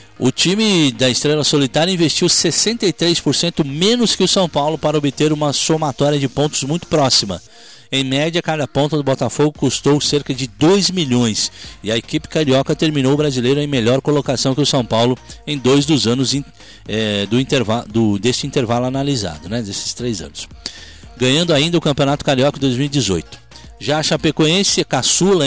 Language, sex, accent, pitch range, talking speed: Portuguese, male, Brazilian, 130-160 Hz, 160 wpm